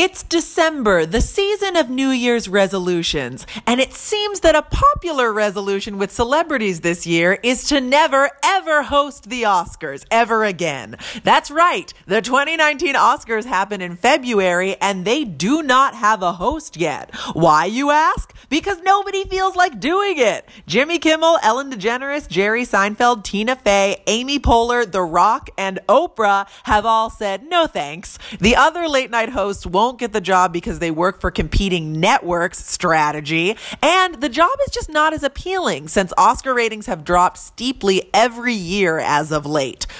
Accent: American